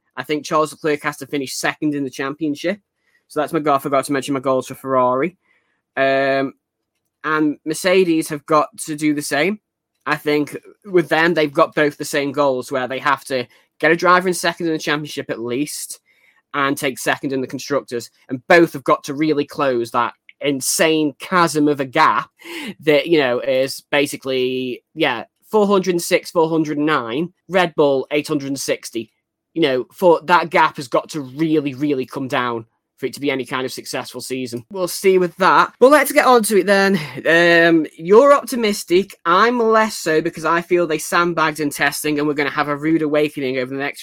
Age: 10-29